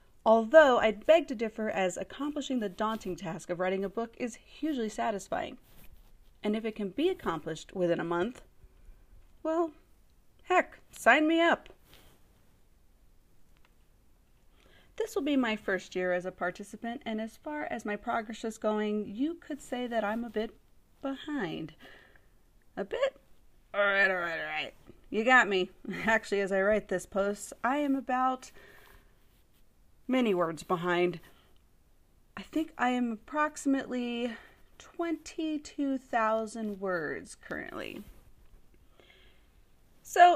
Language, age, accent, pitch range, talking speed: English, 30-49, American, 190-285 Hz, 125 wpm